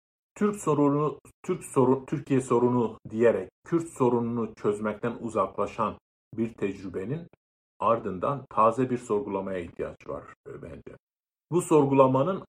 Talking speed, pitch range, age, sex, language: 105 wpm, 115-145 Hz, 50-69, male, Turkish